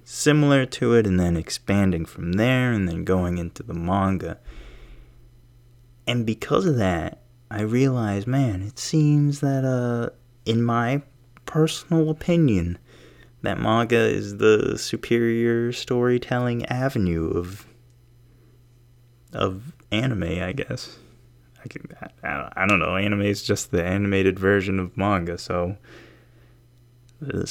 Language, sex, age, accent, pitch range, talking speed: English, male, 20-39, American, 95-120 Hz, 125 wpm